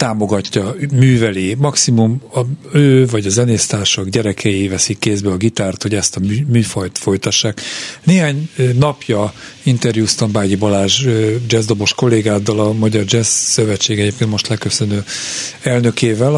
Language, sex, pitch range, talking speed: Hungarian, male, 105-130 Hz, 120 wpm